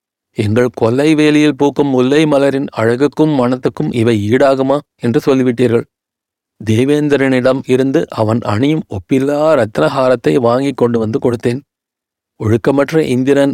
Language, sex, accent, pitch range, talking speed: Tamil, male, native, 120-140 Hz, 105 wpm